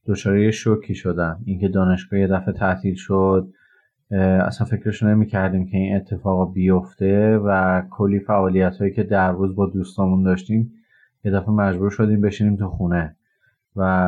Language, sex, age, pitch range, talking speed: Persian, male, 30-49, 95-105 Hz, 145 wpm